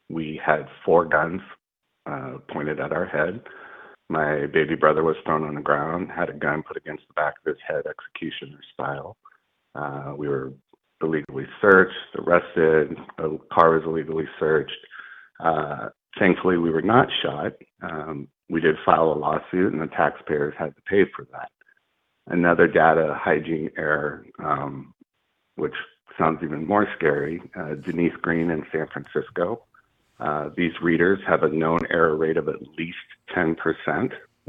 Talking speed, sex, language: 155 wpm, male, English